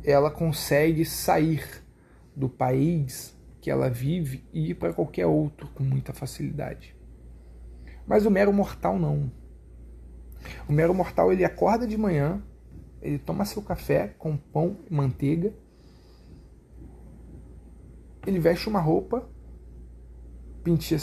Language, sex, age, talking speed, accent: Portuguese, male, 40-59, 115 wpm, Brazilian